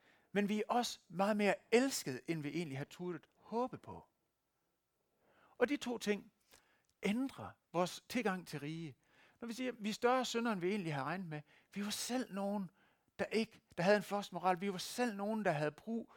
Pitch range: 160-215 Hz